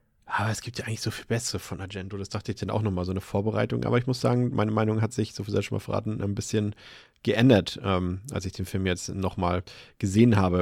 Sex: male